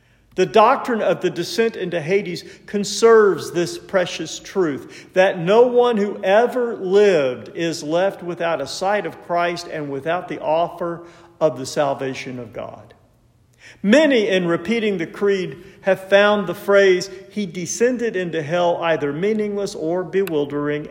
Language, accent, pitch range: English, American, 150-205 Hz